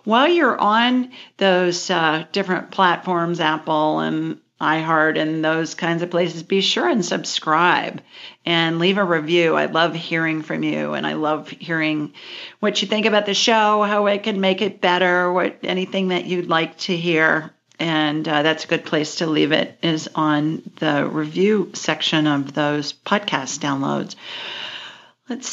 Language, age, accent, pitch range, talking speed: English, 50-69, American, 165-210 Hz, 165 wpm